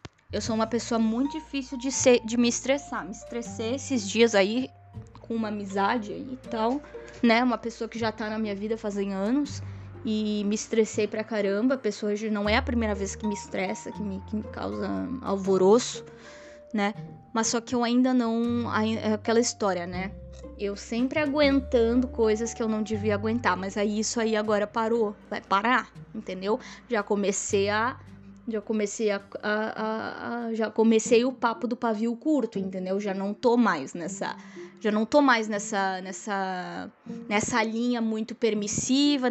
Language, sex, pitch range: Portuguese, female, 205-255 Hz